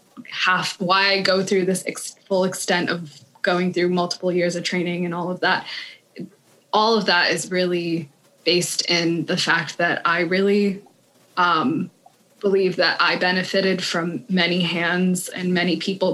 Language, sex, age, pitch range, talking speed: English, female, 20-39, 175-190 Hz, 160 wpm